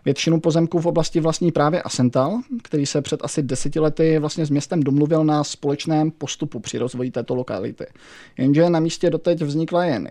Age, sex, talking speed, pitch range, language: 20-39, male, 180 wpm, 140-155 Hz, Czech